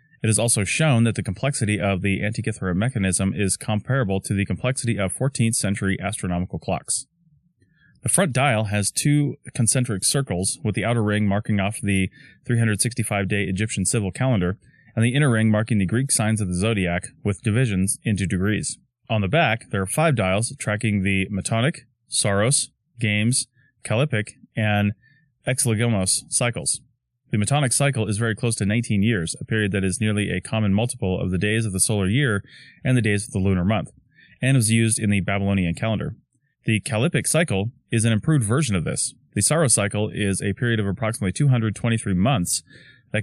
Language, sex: English, male